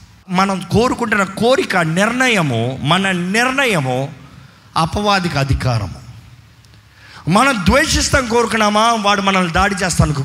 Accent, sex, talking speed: native, male, 90 wpm